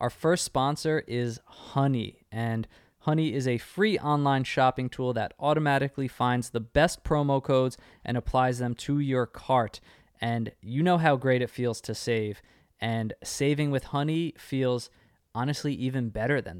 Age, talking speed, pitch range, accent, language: 20-39, 160 wpm, 115-135 Hz, American, English